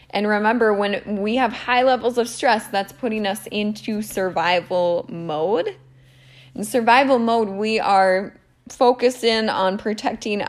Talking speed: 135 wpm